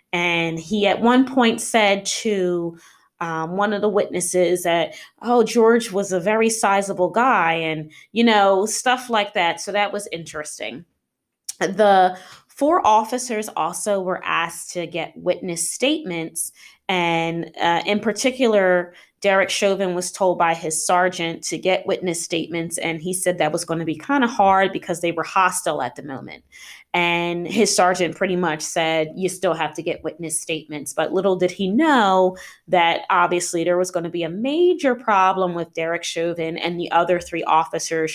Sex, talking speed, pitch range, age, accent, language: female, 170 wpm, 165-200 Hz, 20-39, American, English